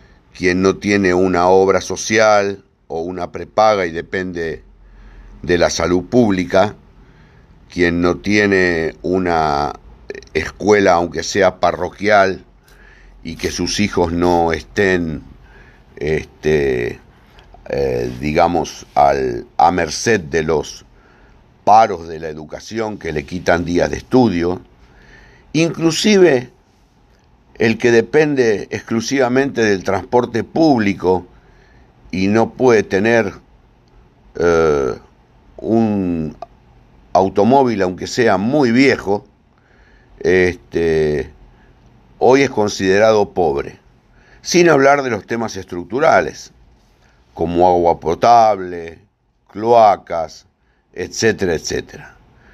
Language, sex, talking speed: Spanish, male, 90 wpm